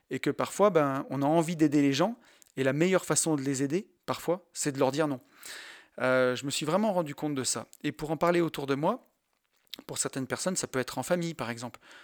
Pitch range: 135-170 Hz